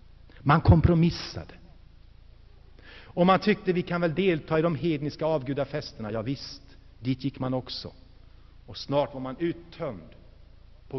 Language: Swedish